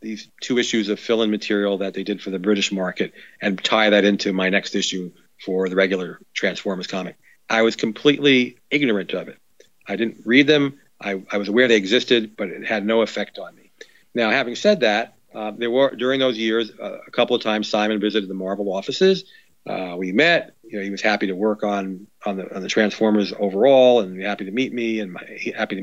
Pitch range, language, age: 100-115 Hz, English, 40-59